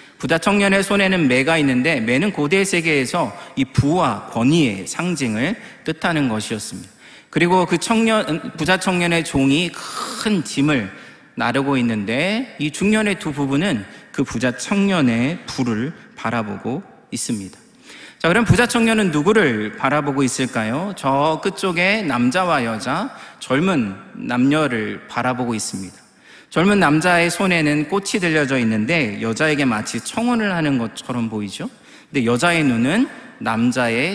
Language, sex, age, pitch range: Korean, male, 40-59, 125-195 Hz